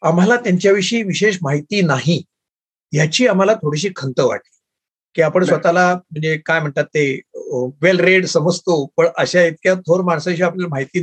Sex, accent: male, native